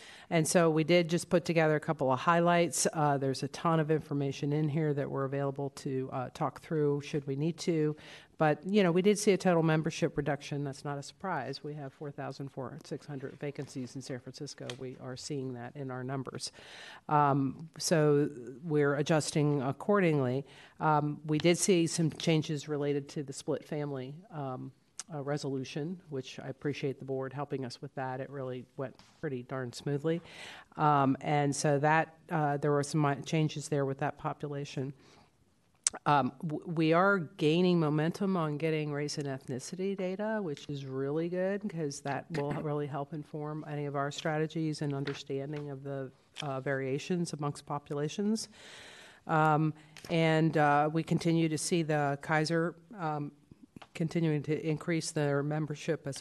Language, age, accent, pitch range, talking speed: English, 50-69, American, 140-160 Hz, 165 wpm